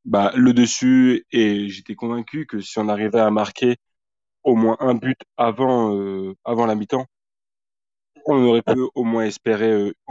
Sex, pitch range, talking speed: male, 105-120 Hz, 165 wpm